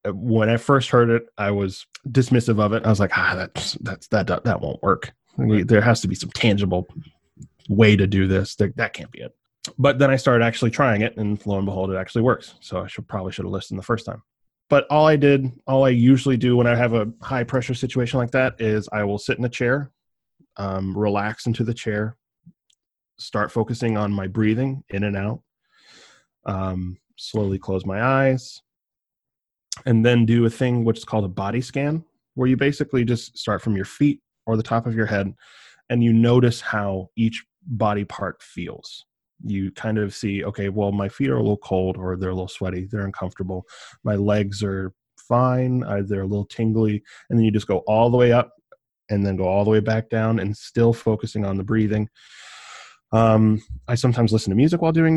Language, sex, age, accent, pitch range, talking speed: English, male, 20-39, American, 100-125 Hz, 210 wpm